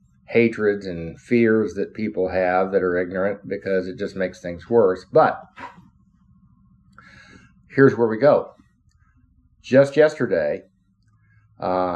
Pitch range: 90-125 Hz